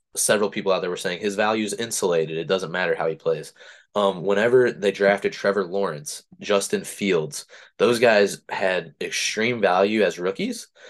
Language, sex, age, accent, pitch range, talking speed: English, male, 20-39, American, 95-120 Hz, 170 wpm